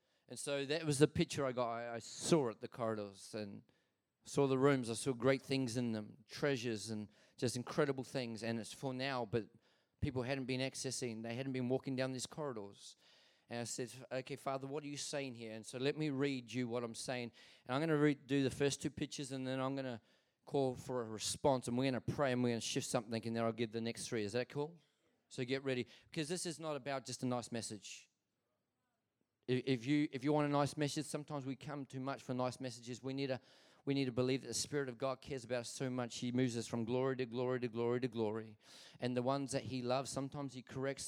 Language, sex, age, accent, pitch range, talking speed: English, male, 30-49, Australian, 125-140 Hz, 245 wpm